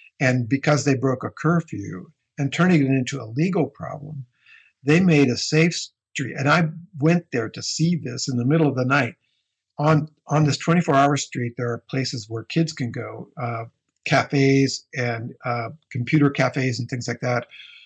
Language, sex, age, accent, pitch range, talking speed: English, male, 60-79, American, 120-150 Hz, 180 wpm